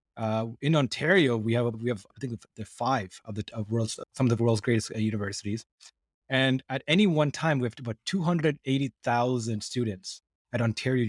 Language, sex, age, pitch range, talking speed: English, male, 20-39, 115-140 Hz, 185 wpm